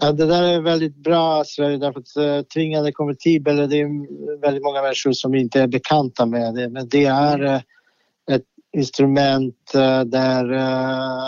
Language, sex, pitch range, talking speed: Swedish, male, 125-140 Hz, 130 wpm